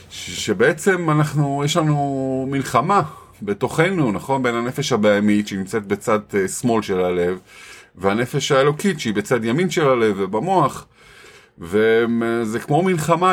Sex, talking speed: male, 115 wpm